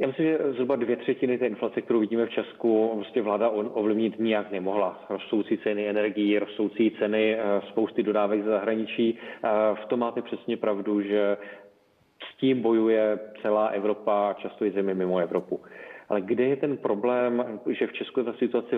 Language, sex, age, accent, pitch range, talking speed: Czech, male, 30-49, native, 105-115 Hz, 175 wpm